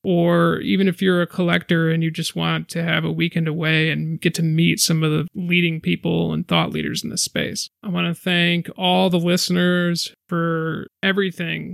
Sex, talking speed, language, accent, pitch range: male, 200 wpm, English, American, 160-180 Hz